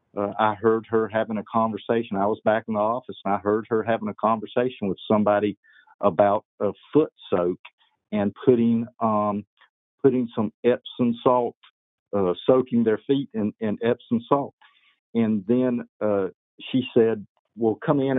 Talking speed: 160 wpm